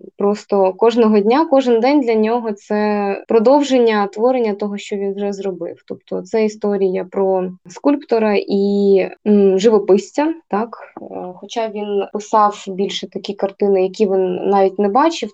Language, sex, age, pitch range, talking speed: Russian, female, 20-39, 195-230 Hz, 135 wpm